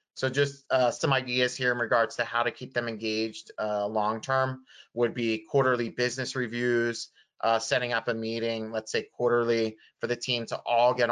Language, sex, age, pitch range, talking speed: English, male, 20-39, 110-130 Hz, 190 wpm